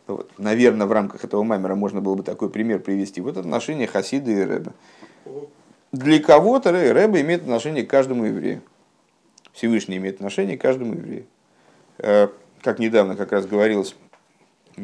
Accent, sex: native, male